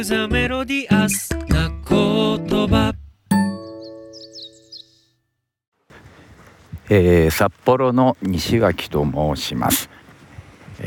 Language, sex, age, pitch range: Japanese, male, 50-69, 85-110 Hz